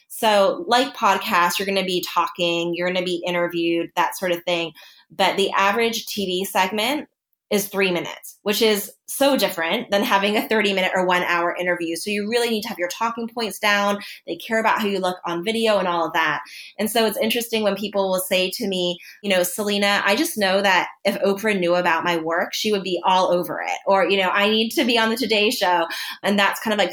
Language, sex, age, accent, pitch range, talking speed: English, female, 20-39, American, 175-215 Hz, 235 wpm